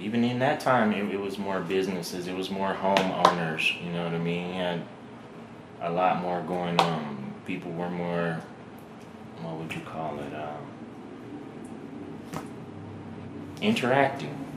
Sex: male